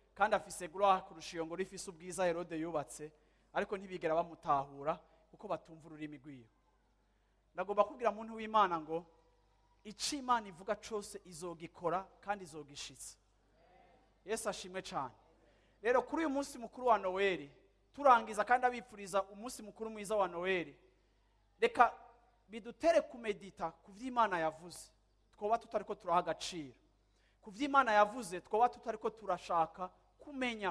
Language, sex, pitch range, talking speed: English, male, 165-215 Hz, 120 wpm